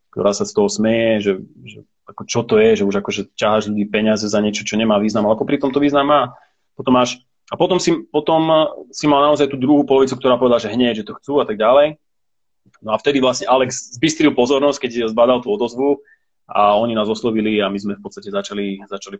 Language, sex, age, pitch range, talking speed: Slovak, male, 30-49, 100-125 Hz, 220 wpm